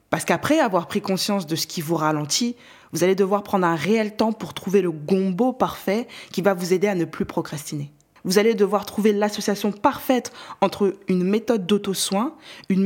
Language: French